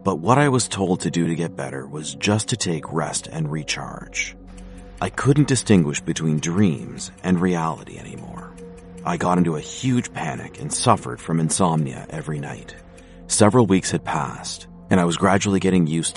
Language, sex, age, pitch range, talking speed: English, male, 40-59, 85-105 Hz, 175 wpm